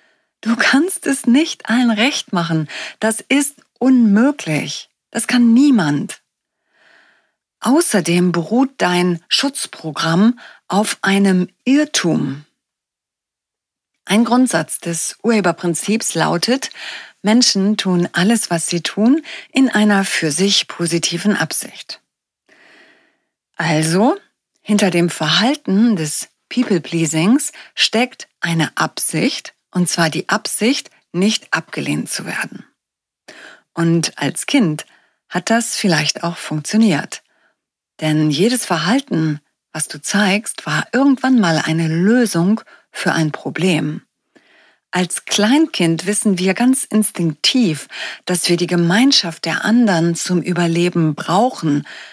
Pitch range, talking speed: 170-245 Hz, 105 wpm